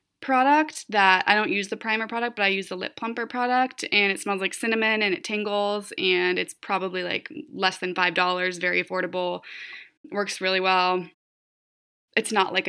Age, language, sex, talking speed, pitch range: 20-39, English, female, 185 wpm, 185-220 Hz